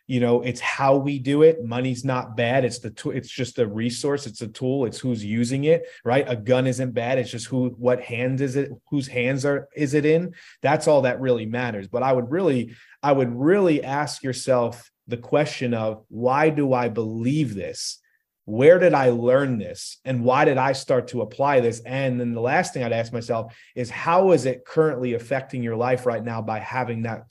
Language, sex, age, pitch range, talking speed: English, male, 30-49, 120-140 Hz, 215 wpm